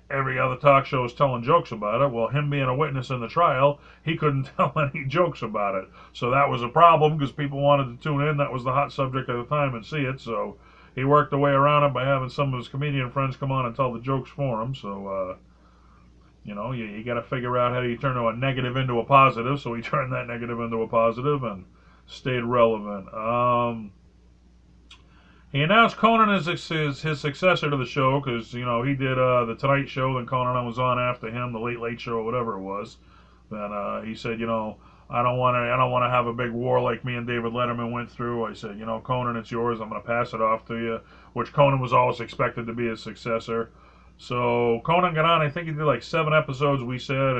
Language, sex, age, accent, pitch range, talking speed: English, male, 40-59, American, 115-140 Hz, 245 wpm